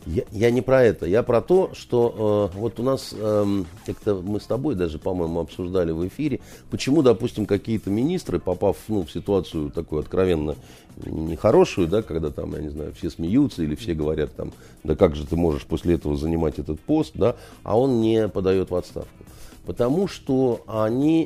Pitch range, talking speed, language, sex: 90-140 Hz, 190 wpm, Russian, male